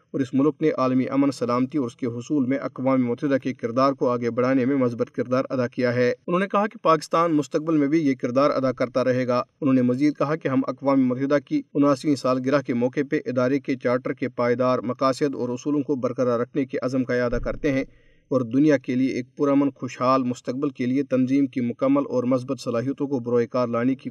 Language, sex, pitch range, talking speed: Urdu, male, 125-150 Hz, 225 wpm